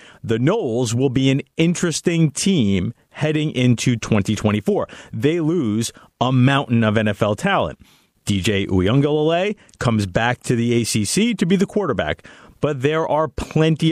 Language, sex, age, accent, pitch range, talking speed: English, male, 40-59, American, 110-155 Hz, 140 wpm